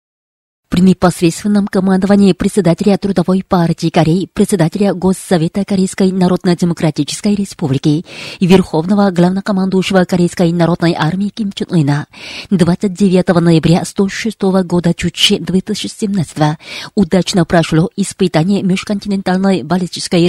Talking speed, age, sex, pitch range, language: 95 wpm, 30-49, female, 175-200 Hz, Russian